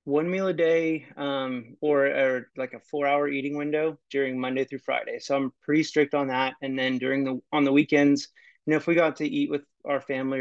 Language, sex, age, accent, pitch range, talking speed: English, male, 30-49, American, 130-145 Hz, 230 wpm